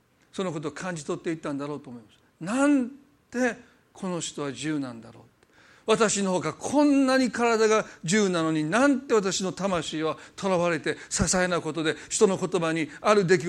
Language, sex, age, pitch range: Japanese, male, 40-59, 155-215 Hz